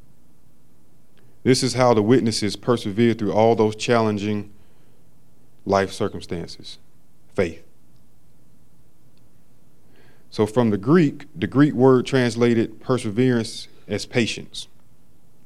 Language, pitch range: English, 100-120 Hz